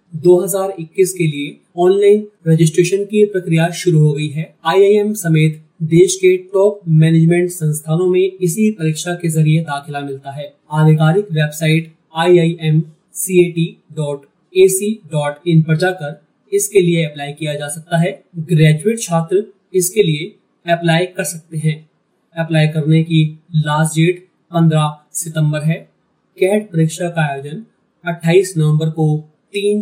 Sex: male